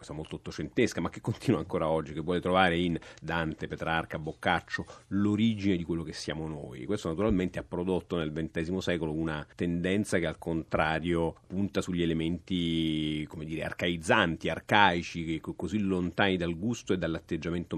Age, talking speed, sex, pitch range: 40-59, 155 wpm, male, 80-100 Hz